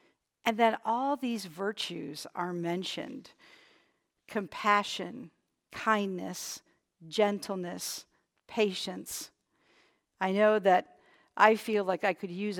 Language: English